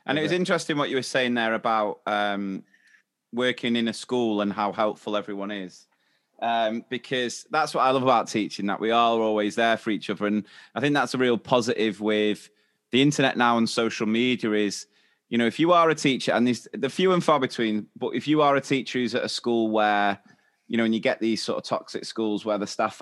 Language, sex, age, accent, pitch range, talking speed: English, male, 20-39, British, 105-125 Hz, 230 wpm